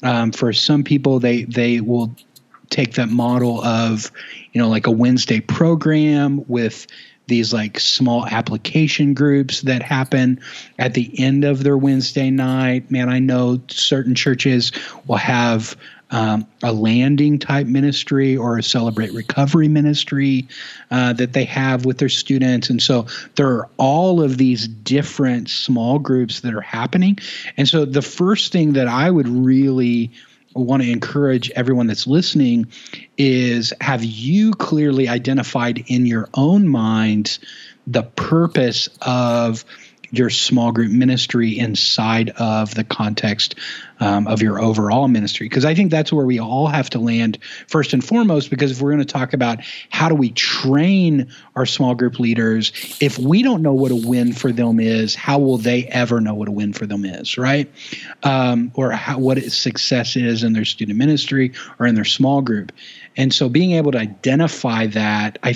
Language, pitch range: English, 115-140 Hz